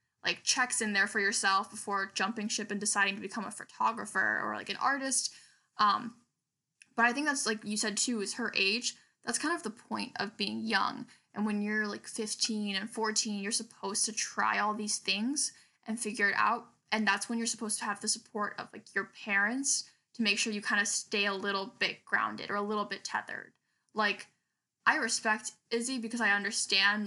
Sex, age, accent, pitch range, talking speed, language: female, 10-29, American, 200-230 Hz, 205 wpm, English